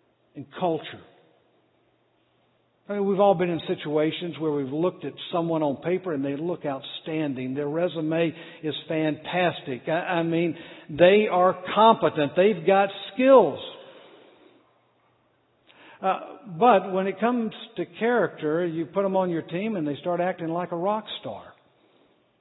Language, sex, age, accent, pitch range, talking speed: English, male, 60-79, American, 165-210 Hz, 140 wpm